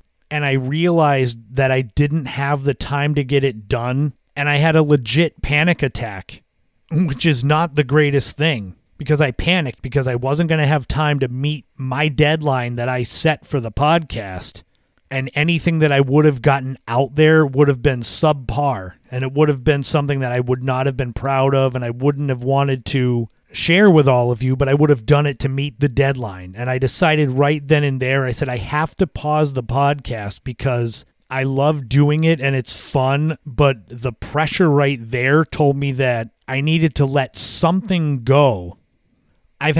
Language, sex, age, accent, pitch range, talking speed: English, male, 30-49, American, 130-150 Hz, 200 wpm